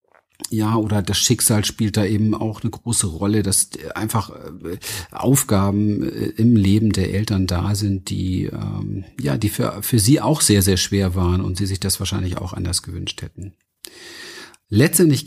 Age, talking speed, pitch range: 50-69, 160 wpm, 100-115 Hz